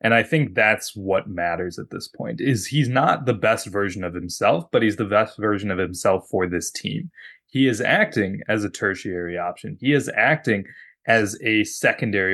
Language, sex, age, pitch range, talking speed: English, male, 20-39, 95-120 Hz, 195 wpm